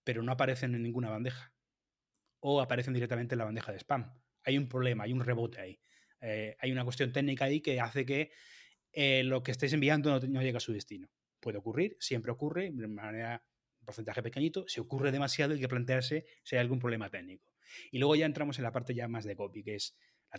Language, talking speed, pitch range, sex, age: Spanish, 220 wpm, 115-145 Hz, male, 20-39